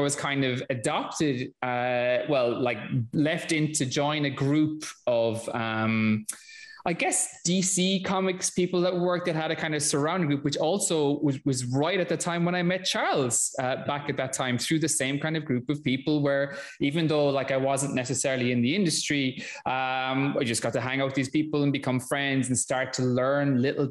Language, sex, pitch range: English, male, 125-150 Hz